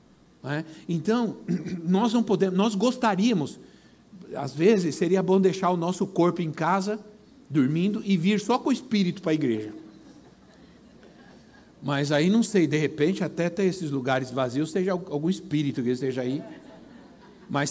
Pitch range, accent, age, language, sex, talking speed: 160-220 Hz, Brazilian, 60-79, Portuguese, male, 140 wpm